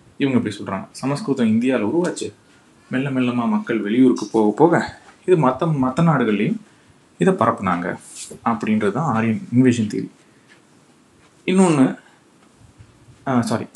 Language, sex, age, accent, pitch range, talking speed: Tamil, male, 30-49, native, 115-155 Hz, 105 wpm